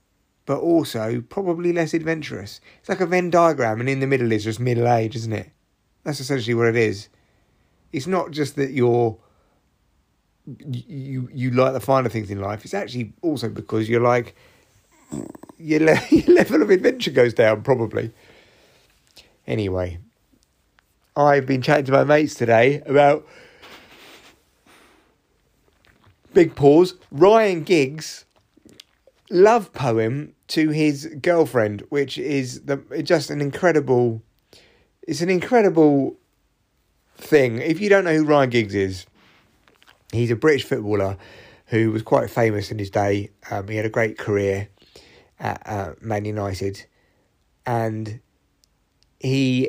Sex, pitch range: male, 110-145 Hz